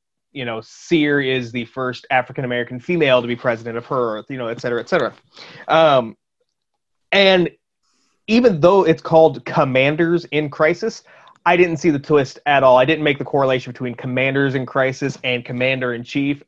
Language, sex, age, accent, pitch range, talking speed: English, male, 30-49, American, 125-170 Hz, 170 wpm